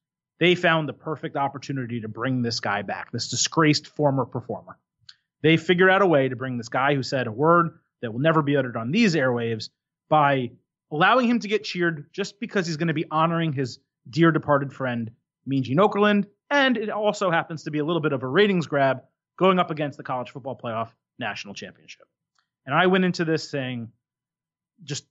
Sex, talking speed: male, 200 wpm